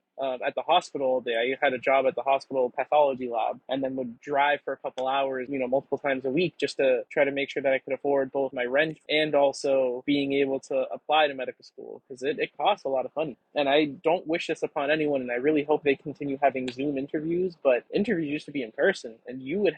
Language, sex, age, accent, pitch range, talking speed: English, male, 20-39, American, 135-155 Hz, 260 wpm